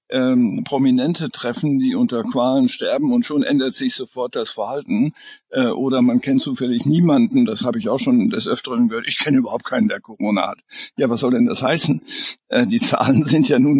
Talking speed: 205 wpm